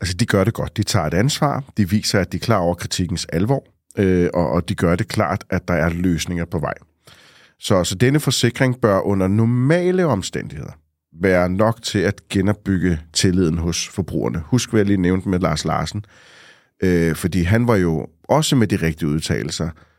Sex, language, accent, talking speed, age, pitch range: male, Danish, native, 195 wpm, 40-59, 85-120 Hz